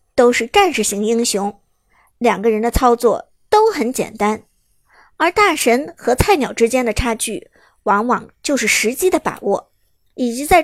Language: Chinese